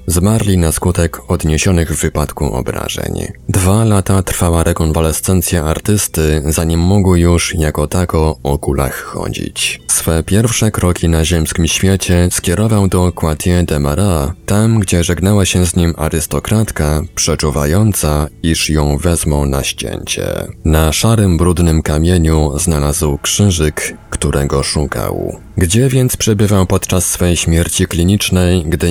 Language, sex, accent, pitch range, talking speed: Polish, male, native, 75-95 Hz, 125 wpm